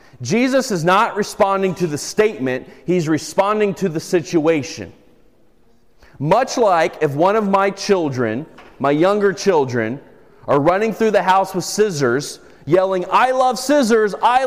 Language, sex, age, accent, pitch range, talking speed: English, male, 30-49, American, 175-235 Hz, 140 wpm